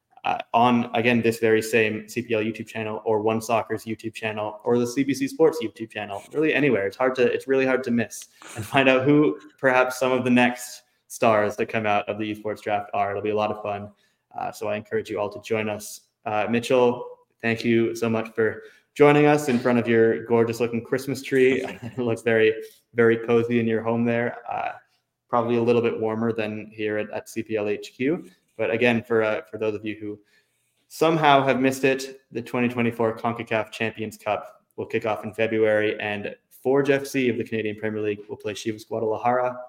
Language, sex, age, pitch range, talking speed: English, male, 20-39, 110-125 Hz, 205 wpm